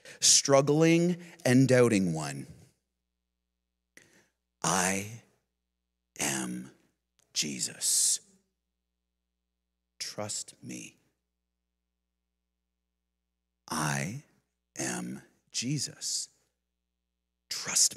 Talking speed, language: 45 wpm, English